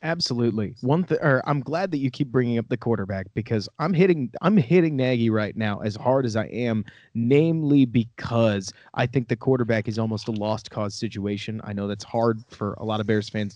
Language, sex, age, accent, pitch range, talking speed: English, male, 30-49, American, 110-145 Hz, 210 wpm